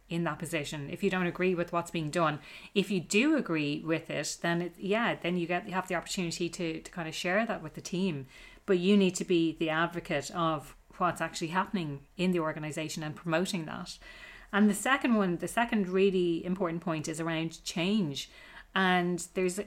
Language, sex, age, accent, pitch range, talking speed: English, female, 30-49, Irish, 165-200 Hz, 205 wpm